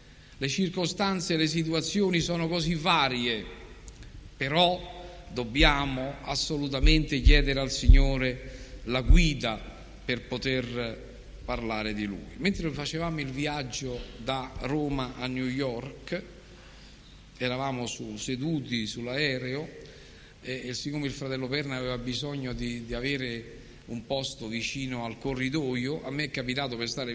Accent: native